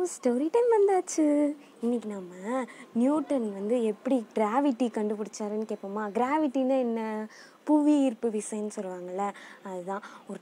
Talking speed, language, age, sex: 110 wpm, Tamil, 20-39, female